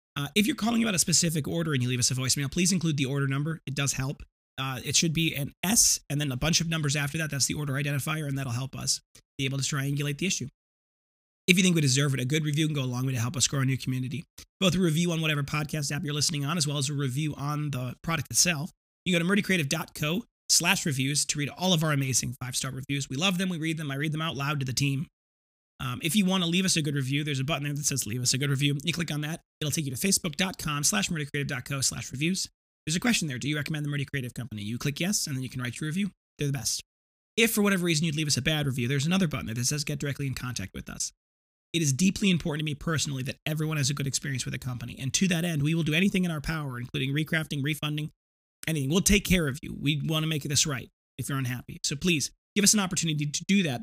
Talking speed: 280 wpm